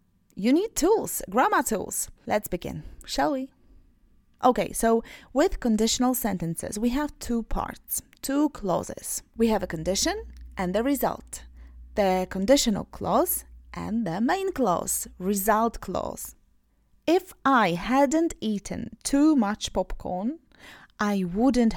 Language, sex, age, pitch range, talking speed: Polish, female, 30-49, 195-275 Hz, 125 wpm